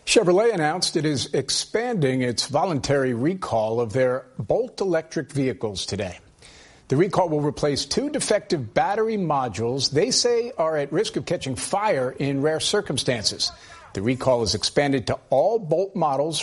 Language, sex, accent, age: English, male, American, 50-69